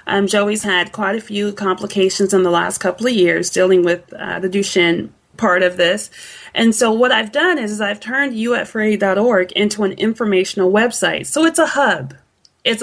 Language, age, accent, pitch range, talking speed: English, 30-49, American, 190-225 Hz, 185 wpm